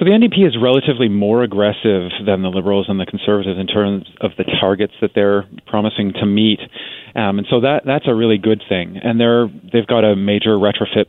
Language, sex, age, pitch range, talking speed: English, male, 30-49, 100-120 Hz, 210 wpm